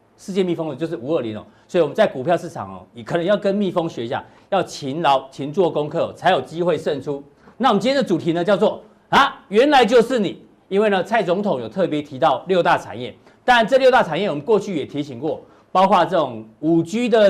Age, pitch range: 40-59, 150-215 Hz